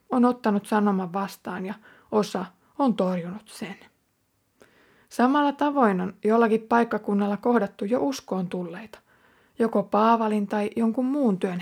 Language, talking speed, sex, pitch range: Finnish, 125 wpm, female, 200-240 Hz